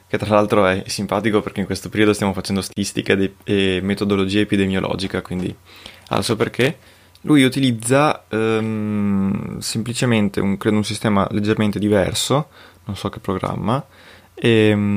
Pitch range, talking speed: 95-110 Hz, 140 wpm